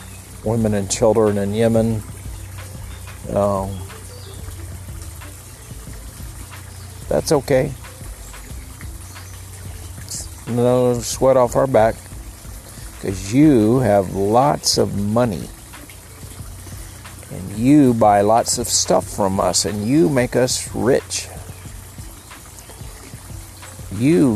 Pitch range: 95-110 Hz